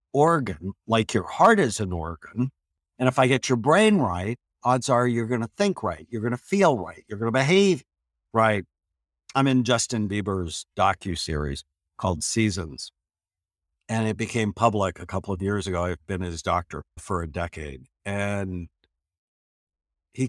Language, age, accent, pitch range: English, 60-79, American, 80-120 Hz